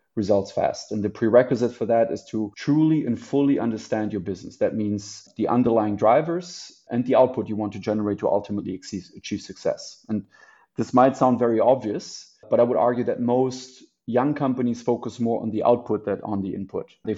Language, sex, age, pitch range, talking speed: English, male, 30-49, 110-125 Hz, 195 wpm